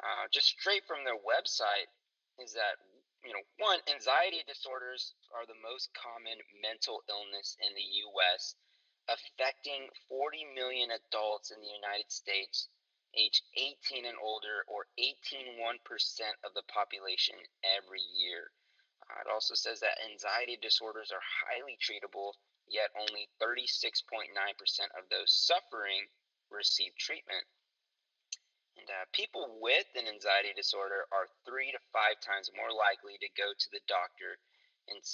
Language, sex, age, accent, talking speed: English, male, 30-49, American, 135 wpm